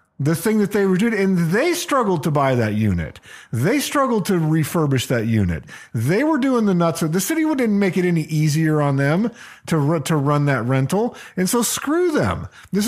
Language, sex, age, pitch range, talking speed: English, male, 40-59, 145-210 Hz, 200 wpm